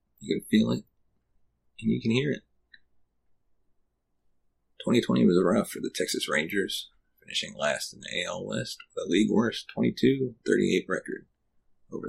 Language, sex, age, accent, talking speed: English, male, 30-49, American, 140 wpm